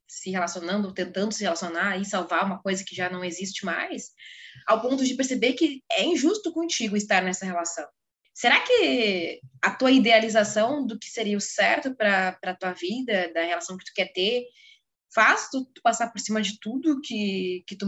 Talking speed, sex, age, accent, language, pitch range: 190 wpm, female, 20-39, Brazilian, Portuguese, 190-255 Hz